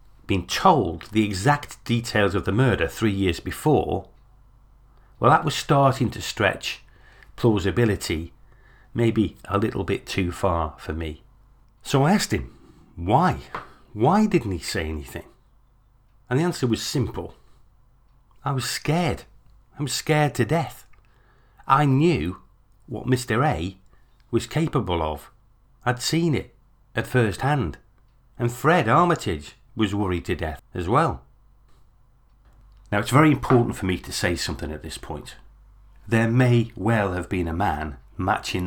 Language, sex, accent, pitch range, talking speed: English, male, British, 90-125 Hz, 145 wpm